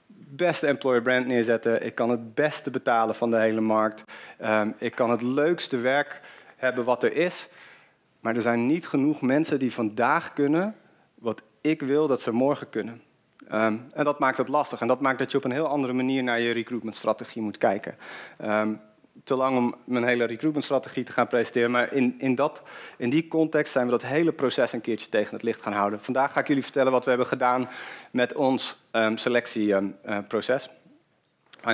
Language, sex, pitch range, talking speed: Dutch, male, 115-135 Hz, 185 wpm